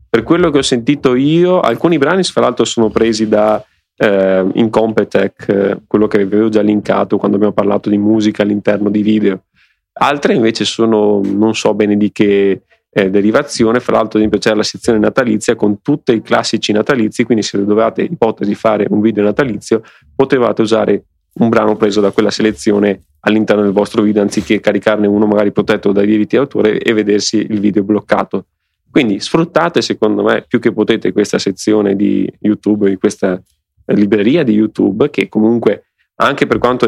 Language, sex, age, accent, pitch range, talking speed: Italian, male, 30-49, native, 100-110 Hz, 170 wpm